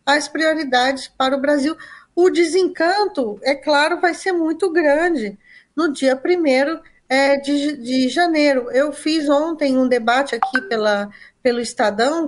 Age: 20-39